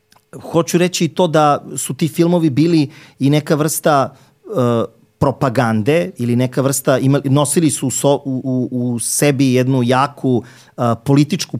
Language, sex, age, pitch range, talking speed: English, male, 40-59, 115-140 Hz, 125 wpm